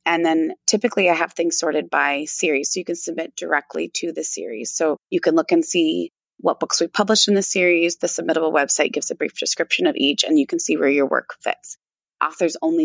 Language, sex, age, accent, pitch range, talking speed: English, female, 20-39, American, 155-210 Hz, 230 wpm